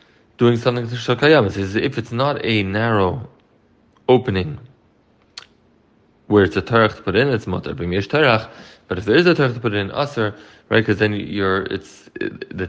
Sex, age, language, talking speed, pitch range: male, 20-39, English, 175 wpm, 100-120 Hz